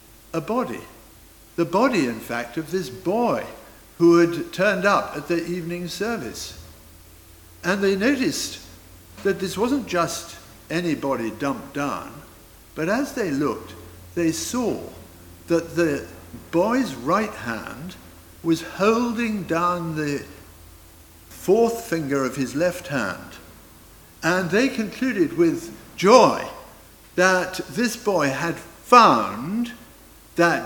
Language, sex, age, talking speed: English, male, 60-79, 115 wpm